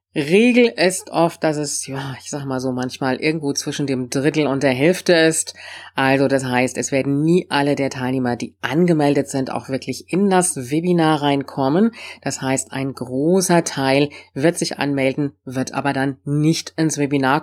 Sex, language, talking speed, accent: female, German, 175 wpm, German